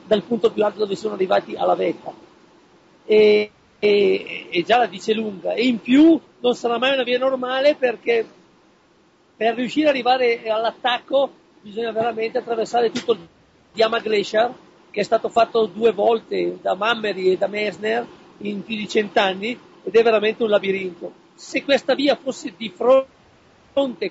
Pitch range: 210-245 Hz